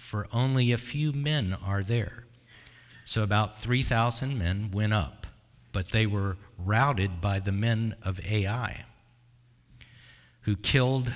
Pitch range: 100-120 Hz